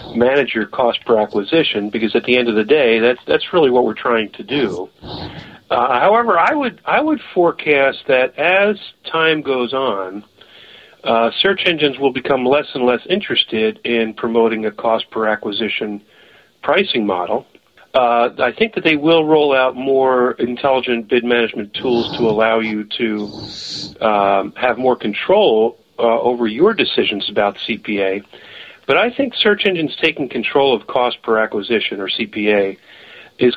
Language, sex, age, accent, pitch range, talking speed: English, male, 50-69, American, 110-140 Hz, 160 wpm